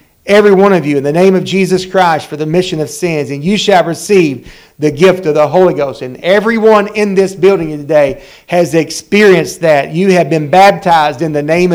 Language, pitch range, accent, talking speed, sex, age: English, 160-195 Hz, American, 210 wpm, male, 50-69